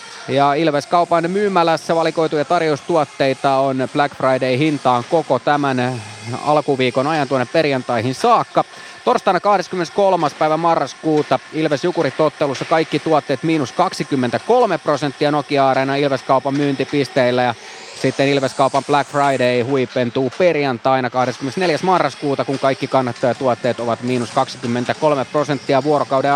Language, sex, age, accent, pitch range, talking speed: Finnish, male, 30-49, native, 130-165 Hz, 105 wpm